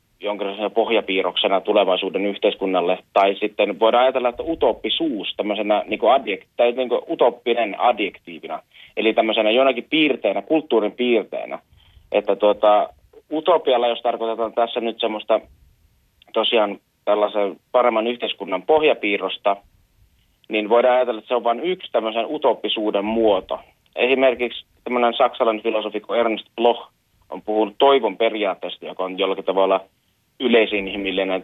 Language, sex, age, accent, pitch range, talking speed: Finnish, male, 30-49, native, 100-120 Hz, 115 wpm